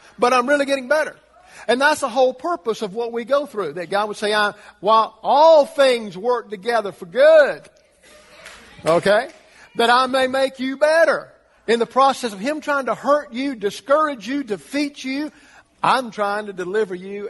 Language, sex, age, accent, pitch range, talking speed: English, male, 50-69, American, 170-230 Hz, 175 wpm